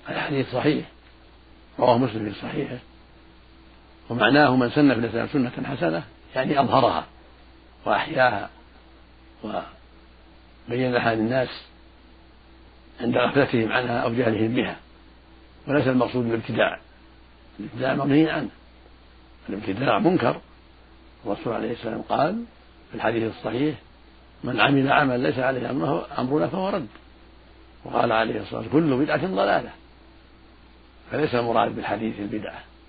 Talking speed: 105 wpm